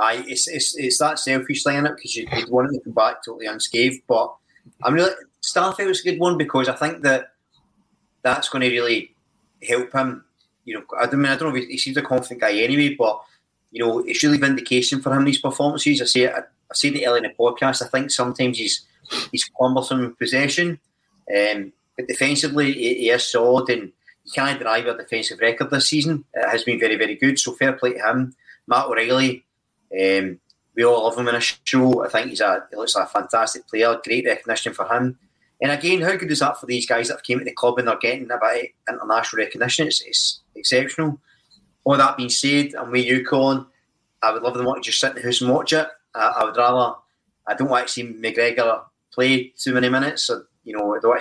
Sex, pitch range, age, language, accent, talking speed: male, 120-140 Hz, 30-49, English, British, 225 wpm